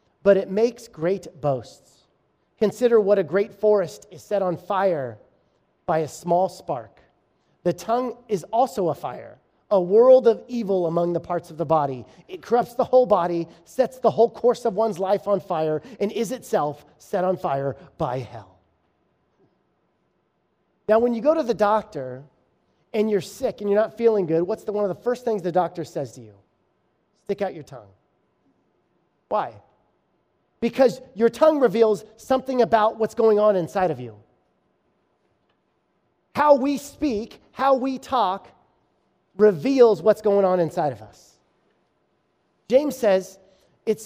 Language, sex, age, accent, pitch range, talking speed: English, male, 30-49, American, 175-230 Hz, 160 wpm